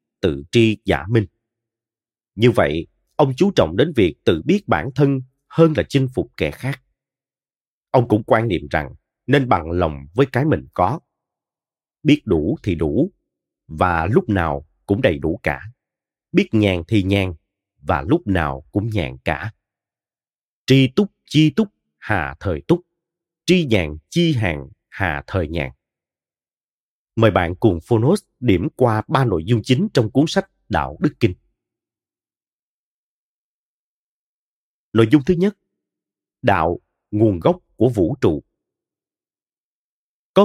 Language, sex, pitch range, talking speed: Vietnamese, male, 90-140 Hz, 140 wpm